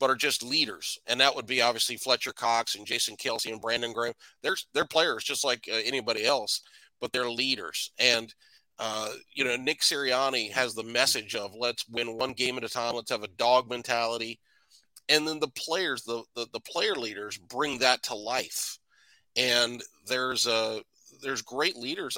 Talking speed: 185 wpm